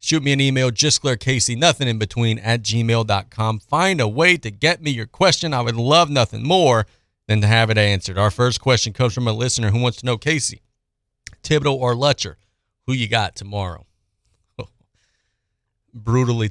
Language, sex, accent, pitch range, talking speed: English, male, American, 100-120 Hz, 165 wpm